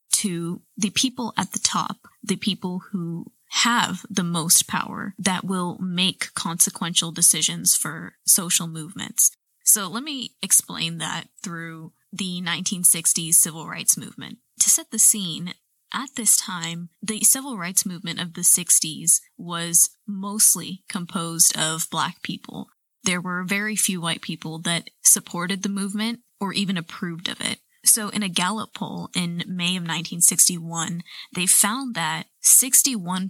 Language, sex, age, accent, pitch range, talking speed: English, female, 20-39, American, 175-205 Hz, 135 wpm